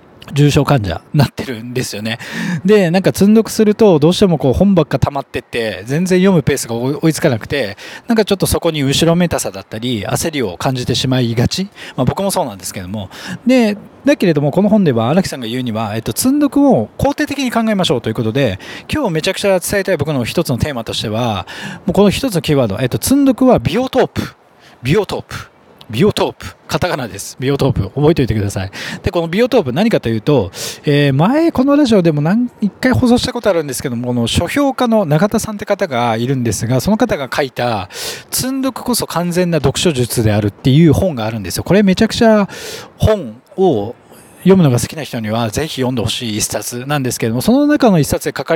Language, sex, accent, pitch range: Japanese, male, native, 125-205 Hz